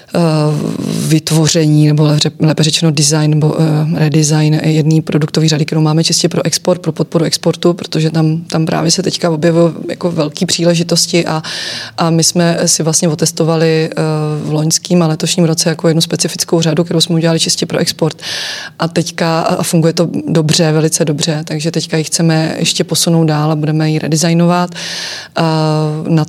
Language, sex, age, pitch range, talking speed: Czech, female, 20-39, 155-170 Hz, 170 wpm